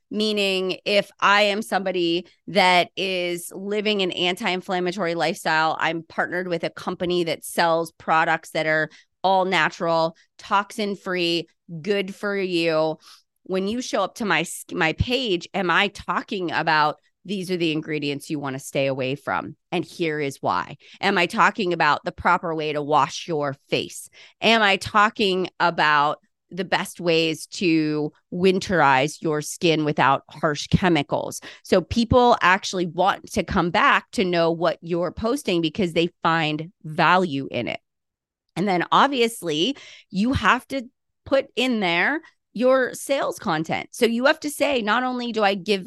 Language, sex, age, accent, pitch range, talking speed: English, female, 30-49, American, 160-205 Hz, 155 wpm